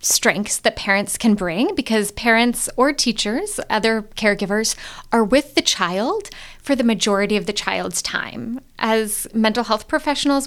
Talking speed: 150 wpm